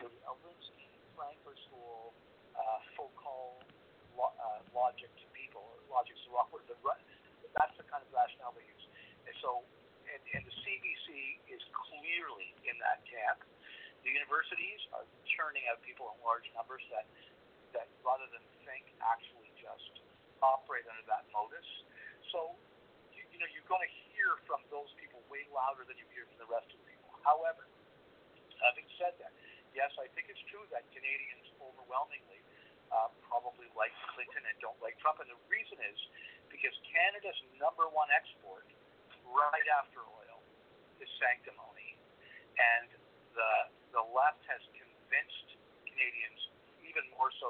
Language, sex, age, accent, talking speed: English, male, 50-69, American, 150 wpm